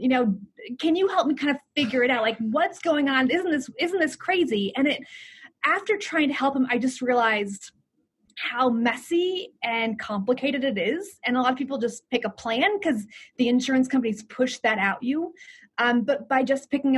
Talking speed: 205 wpm